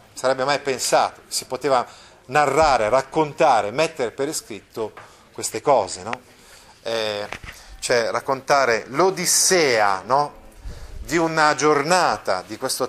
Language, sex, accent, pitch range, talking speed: Italian, male, native, 120-160 Hz, 105 wpm